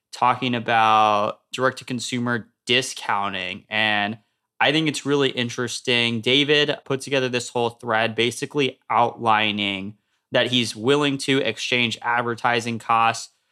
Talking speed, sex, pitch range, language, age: 110 wpm, male, 110-130 Hz, English, 20-39